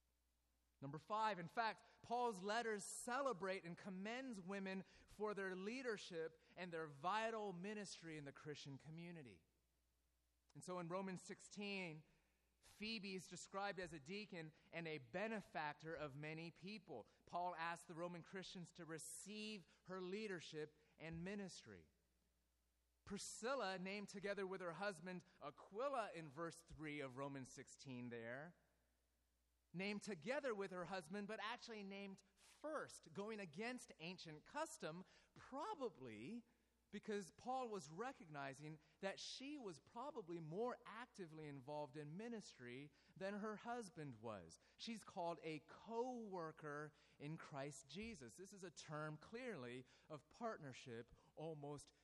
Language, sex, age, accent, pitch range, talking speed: English, male, 30-49, American, 145-205 Hz, 125 wpm